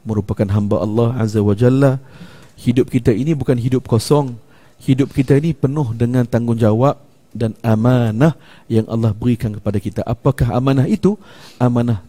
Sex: male